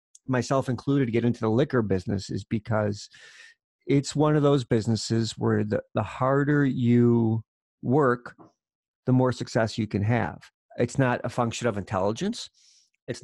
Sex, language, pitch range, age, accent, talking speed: male, English, 110-130 Hz, 50-69, American, 150 wpm